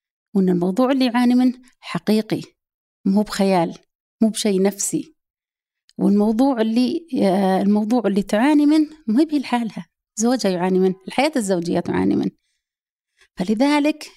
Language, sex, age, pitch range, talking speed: Arabic, female, 30-49, 180-245 Hz, 110 wpm